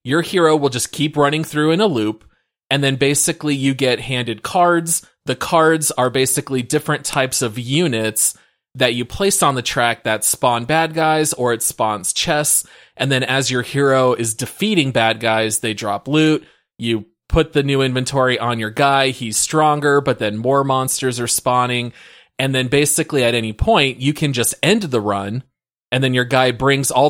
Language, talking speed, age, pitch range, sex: English, 190 wpm, 30-49, 115-150 Hz, male